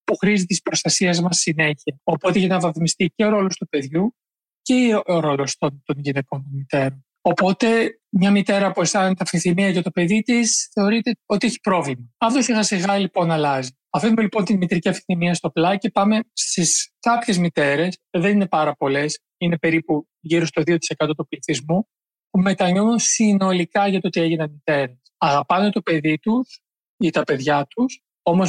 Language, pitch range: Greek, 155-195 Hz